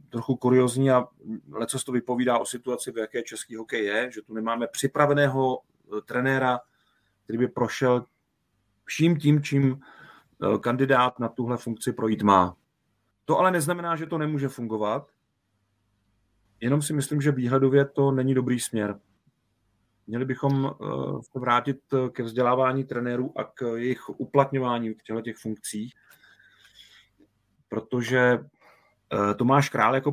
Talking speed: 130 wpm